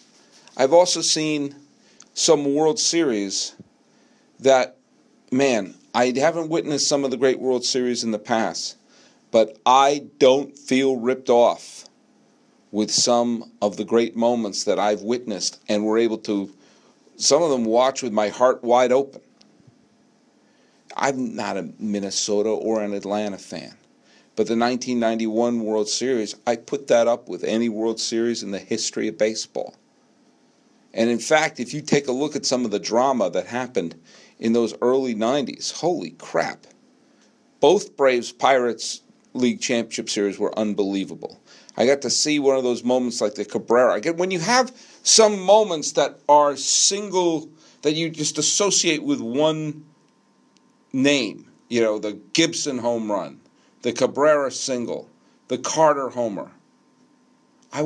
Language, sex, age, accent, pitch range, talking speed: English, male, 40-59, American, 115-150 Hz, 145 wpm